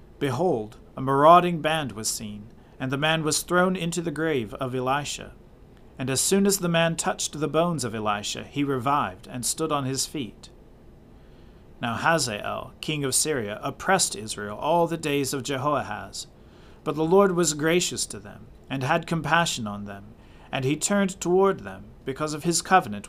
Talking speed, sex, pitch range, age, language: 175 wpm, male, 115-155 Hz, 40-59, English